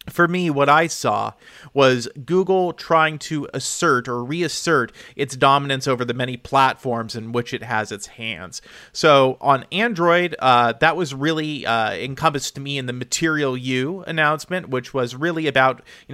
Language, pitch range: English, 125-155 Hz